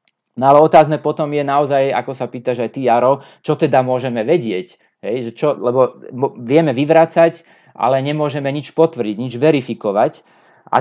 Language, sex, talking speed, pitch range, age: Slovak, male, 155 wpm, 120-155 Hz, 30-49